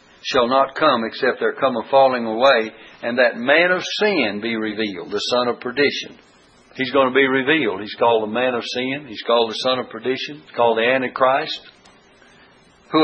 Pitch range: 115-165 Hz